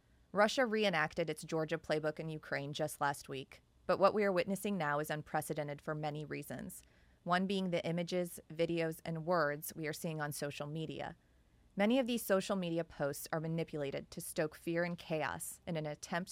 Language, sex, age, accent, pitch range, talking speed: English, female, 20-39, American, 150-185 Hz, 185 wpm